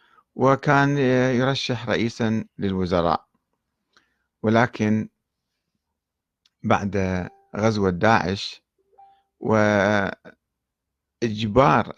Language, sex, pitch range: Arabic, male, 95-125 Hz